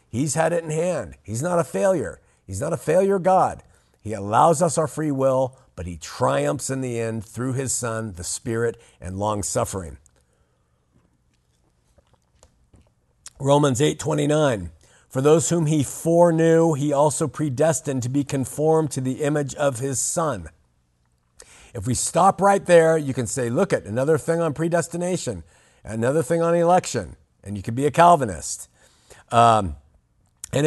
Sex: male